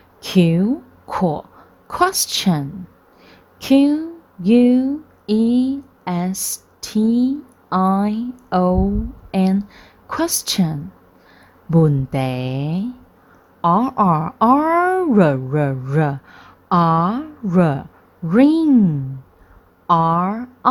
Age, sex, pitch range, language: 30-49, female, 165-260 Hz, Chinese